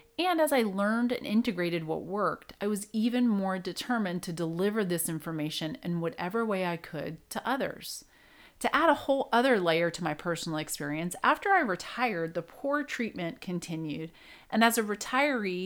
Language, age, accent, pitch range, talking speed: English, 30-49, American, 170-230 Hz, 175 wpm